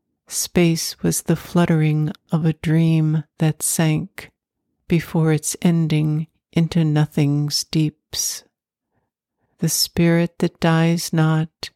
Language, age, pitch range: English, 60-79, 155-170 Hz